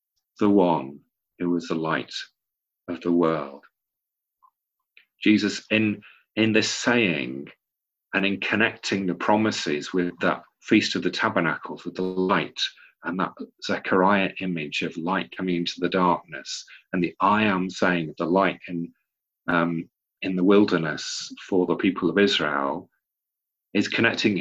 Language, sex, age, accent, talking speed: English, male, 40-59, British, 145 wpm